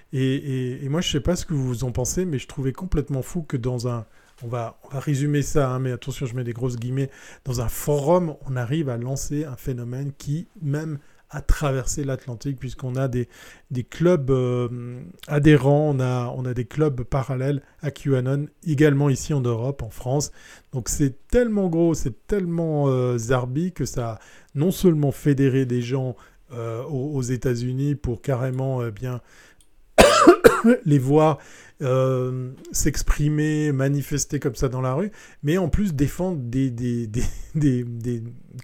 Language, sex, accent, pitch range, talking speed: French, male, French, 125-155 Hz, 180 wpm